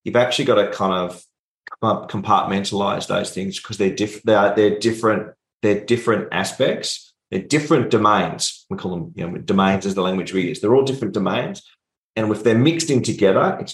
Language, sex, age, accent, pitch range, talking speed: English, male, 30-49, Australian, 95-120 Hz, 190 wpm